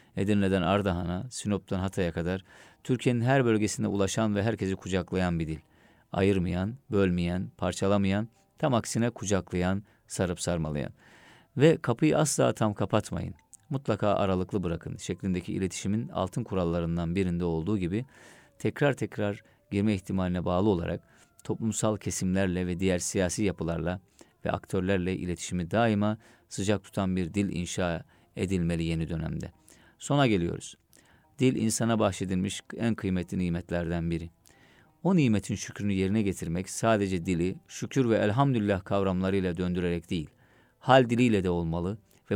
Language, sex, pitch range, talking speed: Turkish, male, 90-110 Hz, 125 wpm